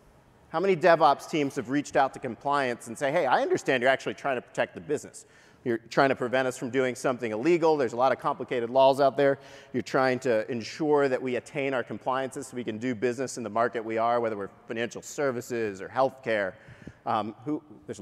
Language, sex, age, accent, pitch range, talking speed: English, male, 40-59, American, 120-150 Hz, 220 wpm